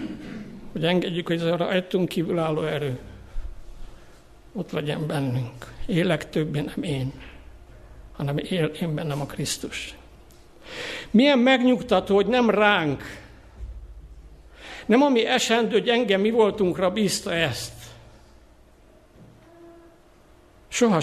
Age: 60-79